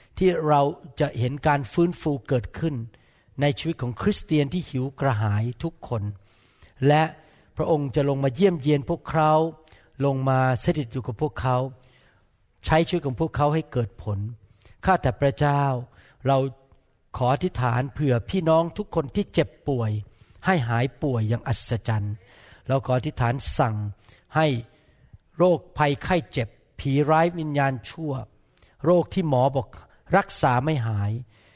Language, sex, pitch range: Thai, male, 120-155 Hz